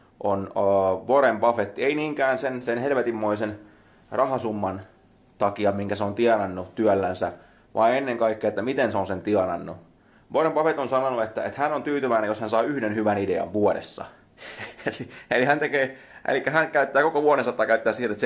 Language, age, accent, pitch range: Finnish, 20-39, native, 100-130 Hz